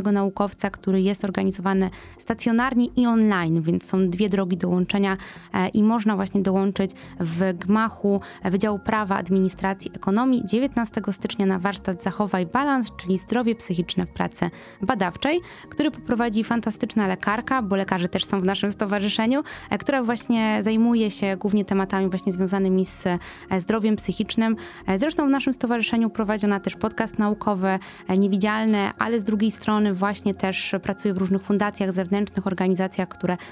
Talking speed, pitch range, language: 140 wpm, 190-220 Hz, Polish